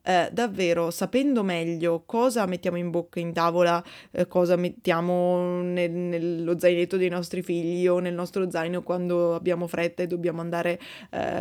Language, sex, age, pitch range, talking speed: Italian, female, 20-39, 175-200 Hz, 160 wpm